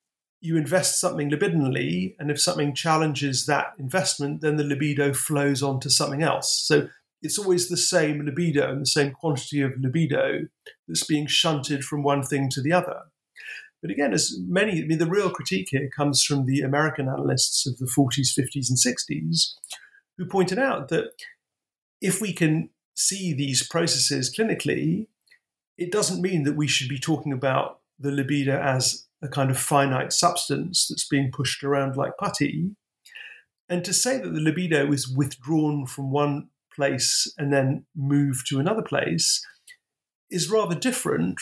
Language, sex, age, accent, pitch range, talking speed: English, male, 50-69, British, 140-175 Hz, 165 wpm